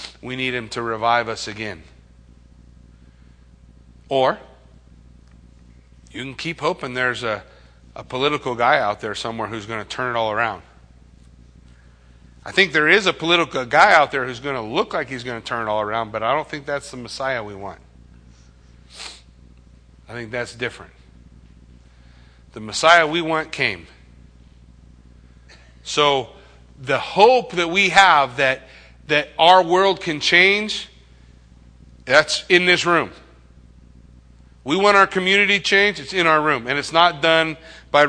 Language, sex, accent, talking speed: English, male, American, 150 wpm